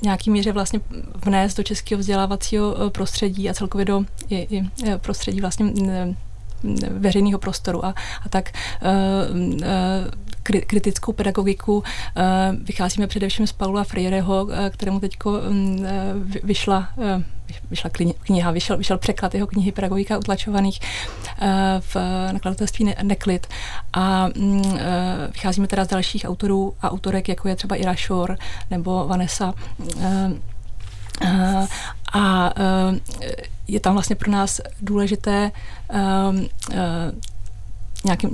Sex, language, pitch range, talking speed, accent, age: female, Czech, 180-200 Hz, 90 wpm, native, 30-49